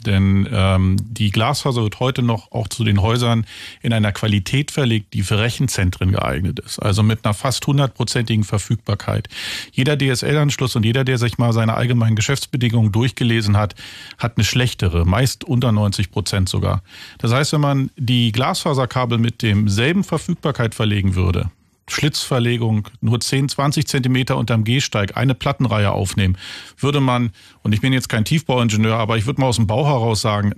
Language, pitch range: German, 105-135 Hz